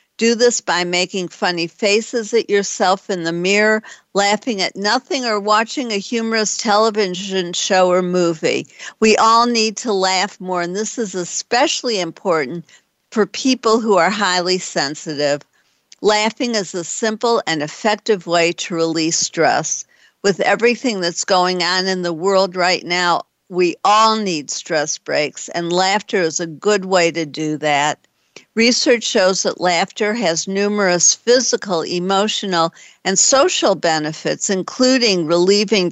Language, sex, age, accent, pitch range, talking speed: English, female, 50-69, American, 170-220 Hz, 145 wpm